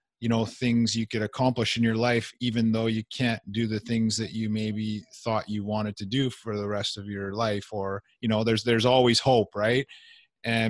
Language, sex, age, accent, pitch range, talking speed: English, male, 30-49, American, 115-135 Hz, 220 wpm